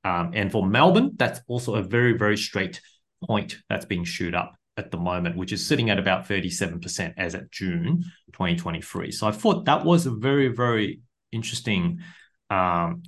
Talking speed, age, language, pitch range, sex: 175 wpm, 30-49, English, 95-125 Hz, male